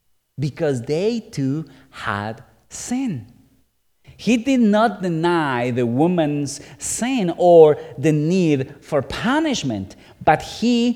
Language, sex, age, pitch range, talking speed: English, male, 40-59, 120-190 Hz, 105 wpm